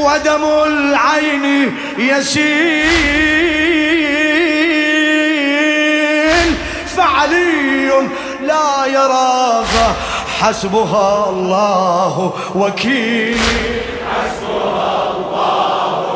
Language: Arabic